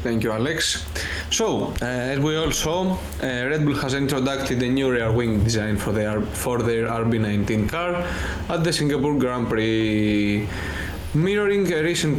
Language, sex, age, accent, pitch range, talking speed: Greek, male, 20-39, Spanish, 105-160 Hz, 165 wpm